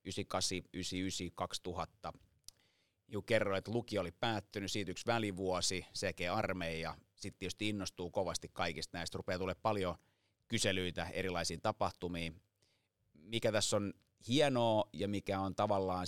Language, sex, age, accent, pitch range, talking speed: Finnish, male, 30-49, native, 90-105 Hz, 125 wpm